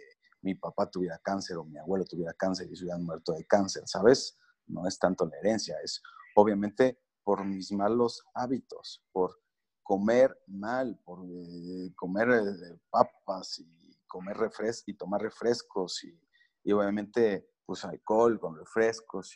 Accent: Mexican